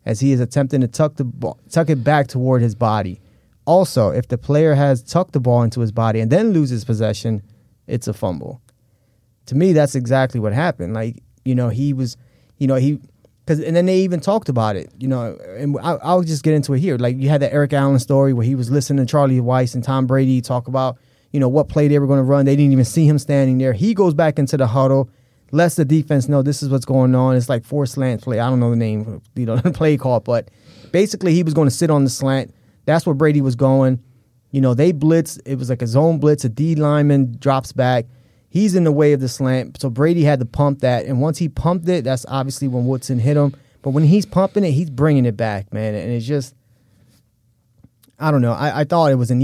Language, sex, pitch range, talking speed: English, male, 120-150 Hz, 250 wpm